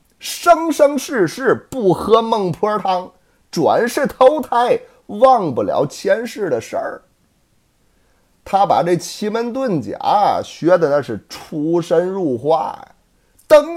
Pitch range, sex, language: 185-295 Hz, male, Chinese